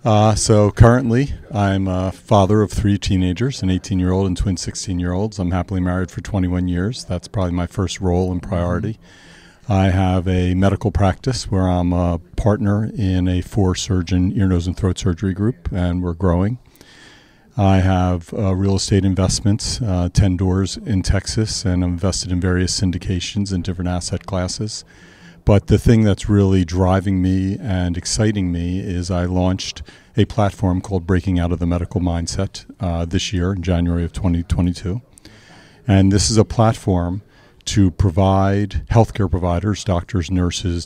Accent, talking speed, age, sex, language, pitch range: American, 165 wpm, 50-69, male, English, 90-100 Hz